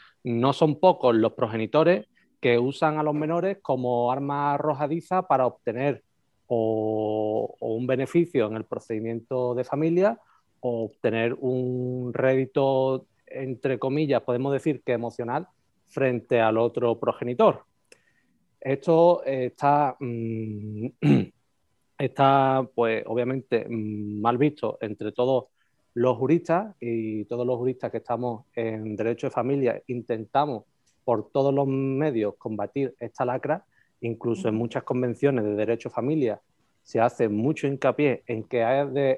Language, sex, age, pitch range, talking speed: Spanish, male, 30-49, 115-140 Hz, 125 wpm